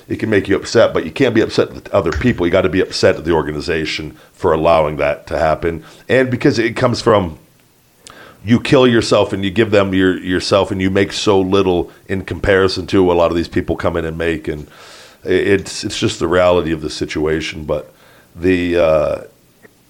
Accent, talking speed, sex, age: American, 210 wpm, male, 40-59